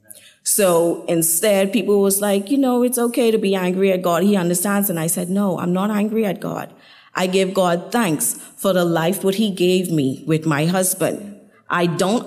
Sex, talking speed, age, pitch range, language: female, 200 wpm, 30-49, 155-190 Hz, English